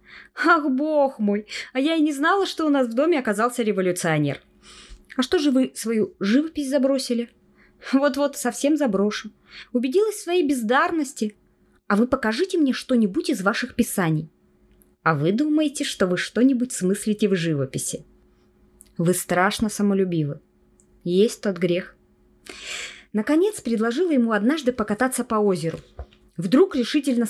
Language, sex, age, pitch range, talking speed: Russian, female, 20-39, 185-270 Hz, 135 wpm